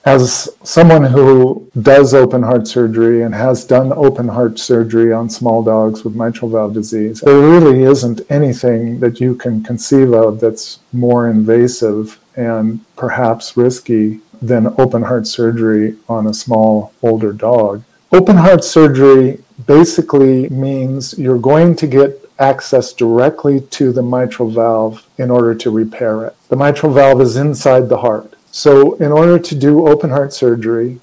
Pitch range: 115-140 Hz